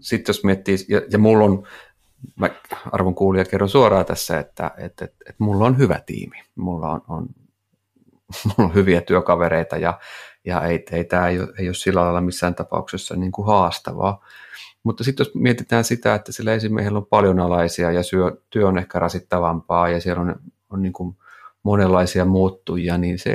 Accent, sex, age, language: native, male, 30-49, Finnish